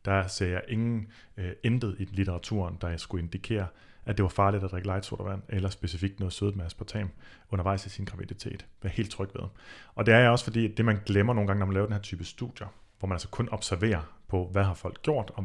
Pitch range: 95-105 Hz